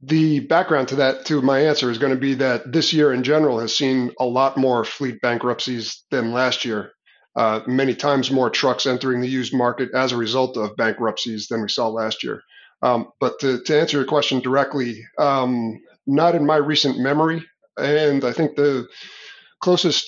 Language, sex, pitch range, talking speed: English, male, 130-150 Hz, 190 wpm